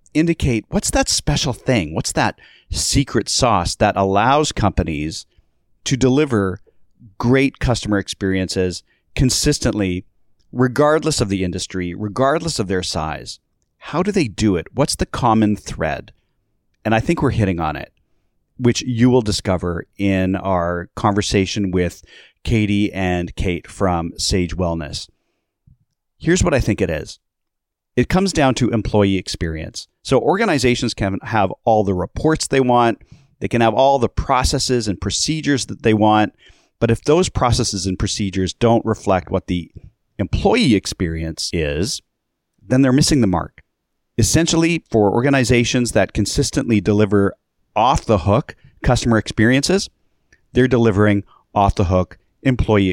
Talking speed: 135 wpm